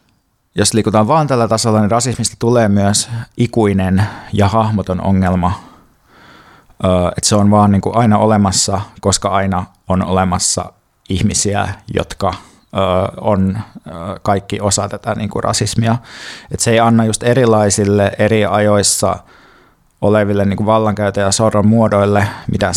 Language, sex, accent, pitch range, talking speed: Finnish, male, native, 95-110 Hz, 110 wpm